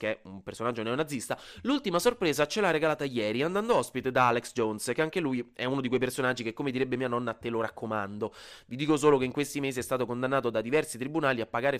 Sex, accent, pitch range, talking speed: male, native, 125-170 Hz, 240 wpm